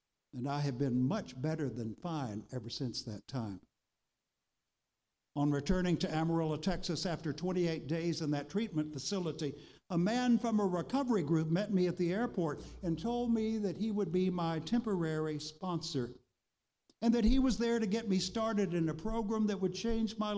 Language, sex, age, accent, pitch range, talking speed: English, male, 60-79, American, 155-225 Hz, 180 wpm